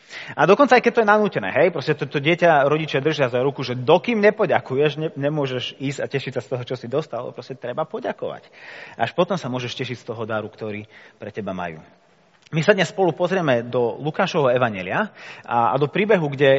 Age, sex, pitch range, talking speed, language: 30-49, male, 120-175 Hz, 210 wpm, Slovak